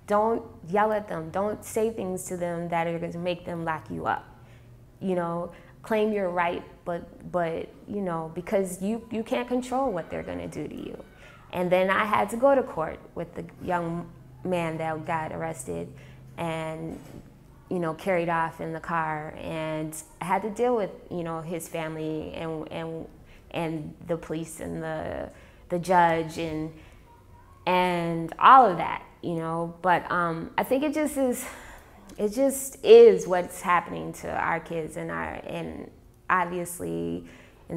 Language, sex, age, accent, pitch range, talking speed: English, female, 20-39, American, 160-185 Hz, 170 wpm